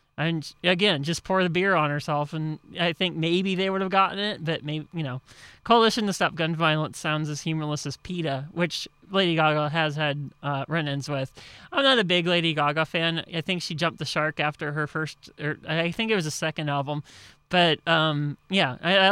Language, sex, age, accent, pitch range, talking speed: English, male, 30-49, American, 155-195 Hz, 215 wpm